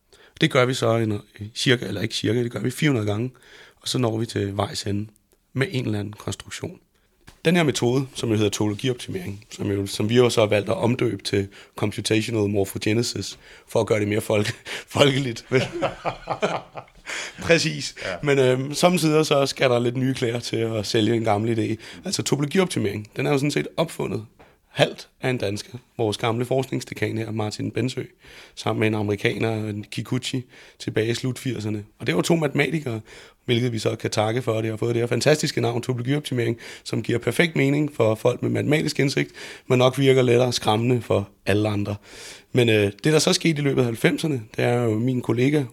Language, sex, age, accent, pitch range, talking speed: Danish, male, 30-49, native, 105-130 Hz, 195 wpm